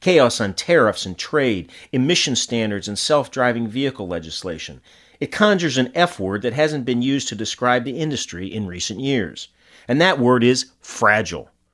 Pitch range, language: 105-140 Hz, English